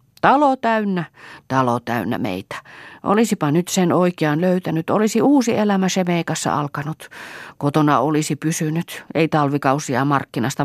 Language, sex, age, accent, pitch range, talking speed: Finnish, female, 30-49, native, 130-175 Hz, 120 wpm